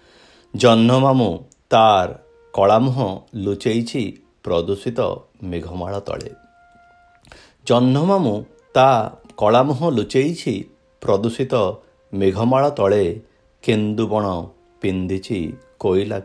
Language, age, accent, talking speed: Hindi, 50-69, native, 70 wpm